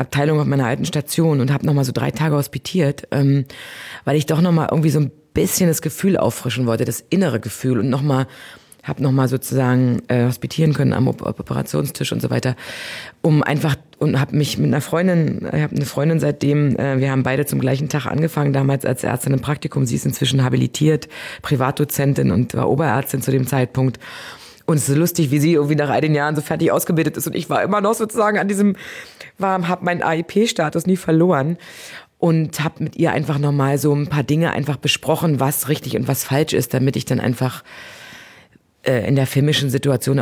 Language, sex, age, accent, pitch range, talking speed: German, female, 20-39, German, 130-160 Hz, 195 wpm